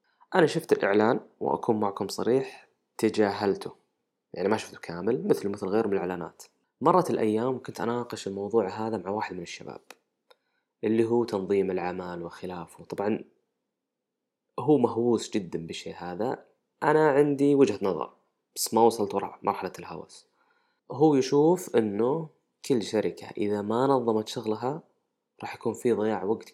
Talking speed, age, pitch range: 140 wpm, 20-39, 105-160 Hz